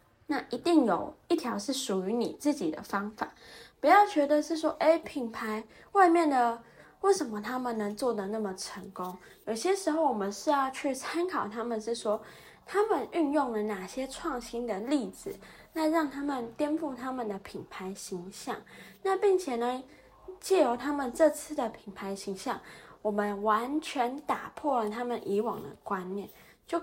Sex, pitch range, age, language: female, 215-305 Hz, 20-39, Chinese